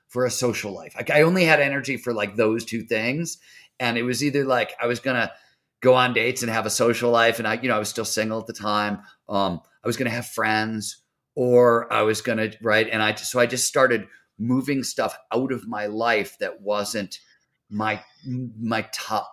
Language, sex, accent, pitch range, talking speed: English, male, American, 105-130 Hz, 225 wpm